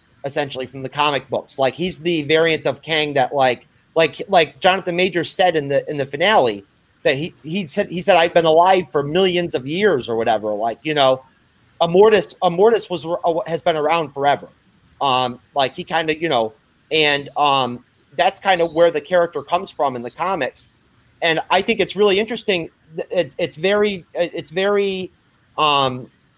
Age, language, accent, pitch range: 30-49, English, American, 140-185 Hz